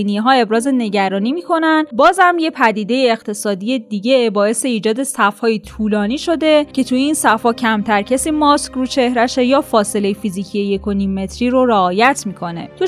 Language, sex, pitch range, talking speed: Persian, female, 220-290 Hz, 165 wpm